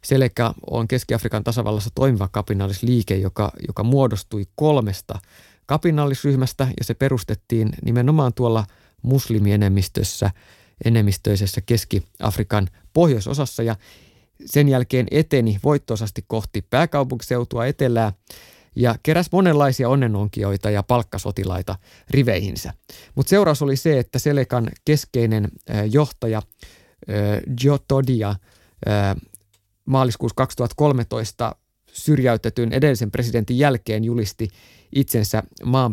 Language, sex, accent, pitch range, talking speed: Finnish, male, native, 105-130 Hz, 90 wpm